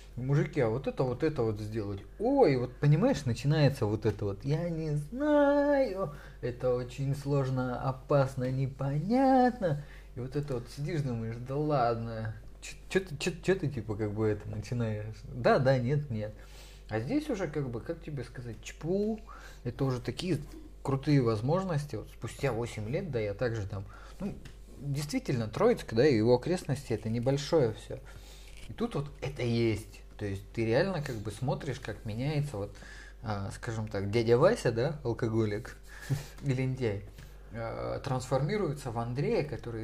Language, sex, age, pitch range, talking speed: Russian, male, 30-49, 115-145 Hz, 160 wpm